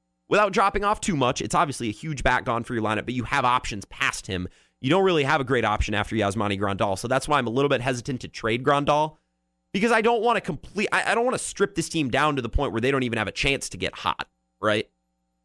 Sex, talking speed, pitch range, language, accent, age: male, 270 wpm, 95-150 Hz, English, American, 30-49